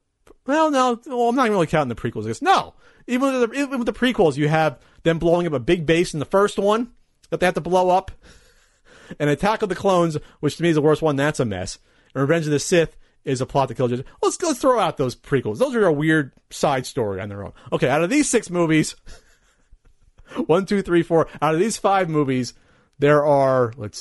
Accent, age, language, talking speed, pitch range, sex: American, 40-59, English, 240 wpm, 120-170 Hz, male